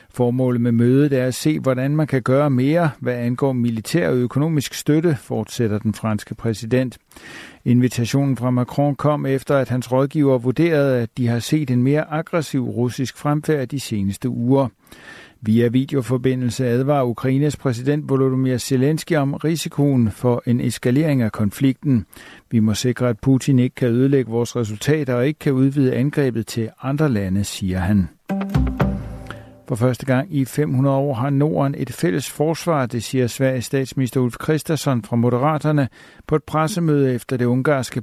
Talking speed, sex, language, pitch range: 160 wpm, male, Danish, 120-145 Hz